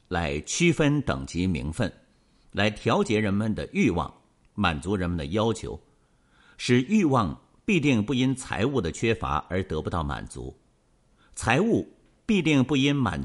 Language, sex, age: Chinese, male, 50-69